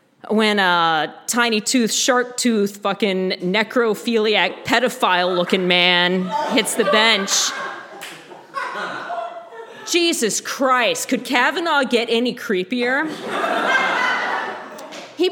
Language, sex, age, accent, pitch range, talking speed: English, female, 40-59, American, 195-260 Hz, 80 wpm